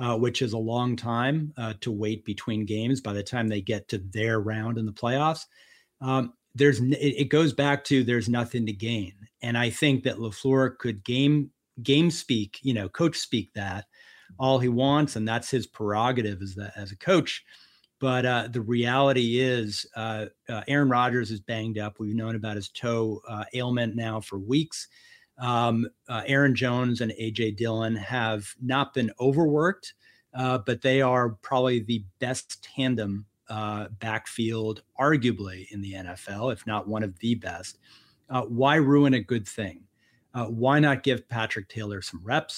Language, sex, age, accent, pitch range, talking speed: English, male, 40-59, American, 110-130 Hz, 180 wpm